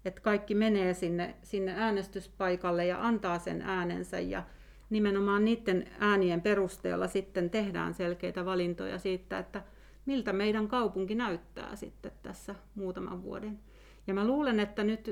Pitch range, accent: 185-230 Hz, native